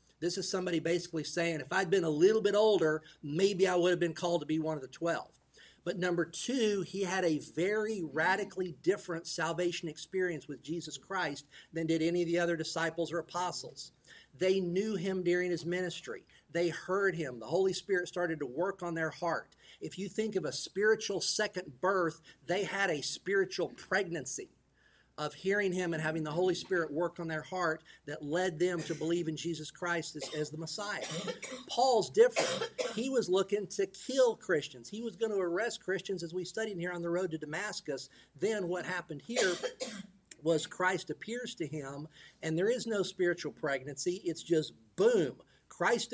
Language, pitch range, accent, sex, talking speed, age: English, 160-190 Hz, American, male, 185 wpm, 50-69